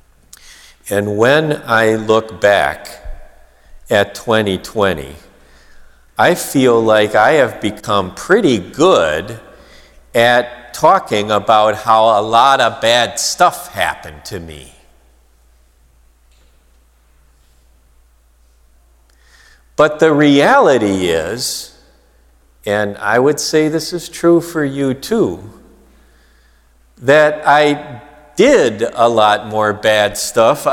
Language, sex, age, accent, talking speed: English, male, 50-69, American, 95 wpm